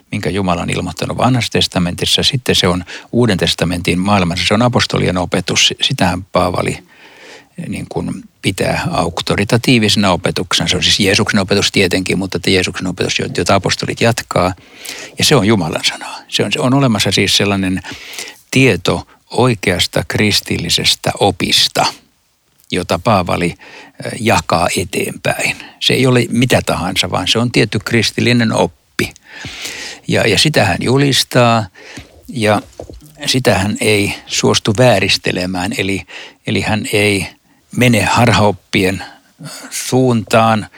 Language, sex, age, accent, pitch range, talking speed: Finnish, male, 60-79, native, 95-115 Hz, 125 wpm